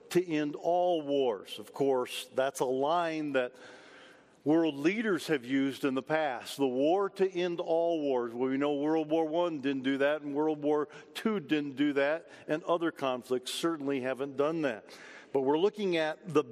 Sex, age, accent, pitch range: male, 50-69, American, 135-165 Hz